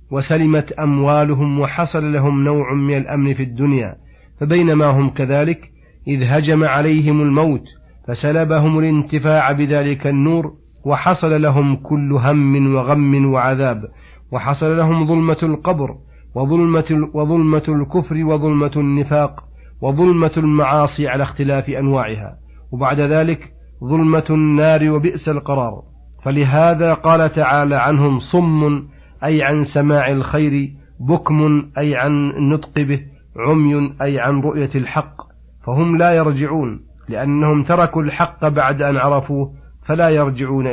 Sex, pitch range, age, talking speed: male, 135-155 Hz, 40-59, 110 wpm